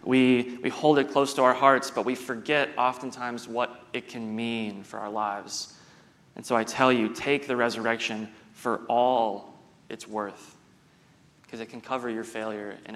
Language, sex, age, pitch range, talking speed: English, male, 30-49, 115-130 Hz, 175 wpm